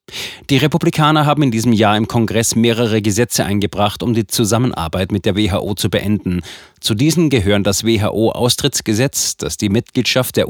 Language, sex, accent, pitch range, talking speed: German, male, German, 100-125 Hz, 165 wpm